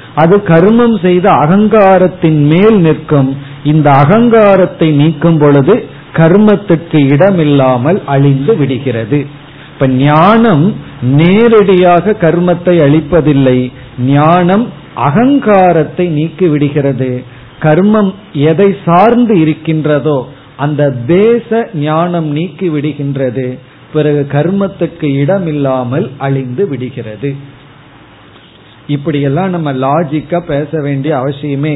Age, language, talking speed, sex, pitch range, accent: 50-69, Tamil, 75 wpm, male, 140-175 Hz, native